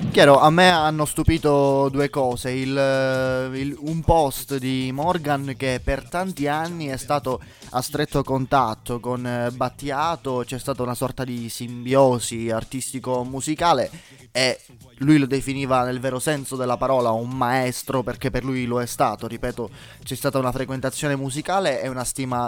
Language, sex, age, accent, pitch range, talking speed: Italian, male, 20-39, native, 115-135 Hz, 150 wpm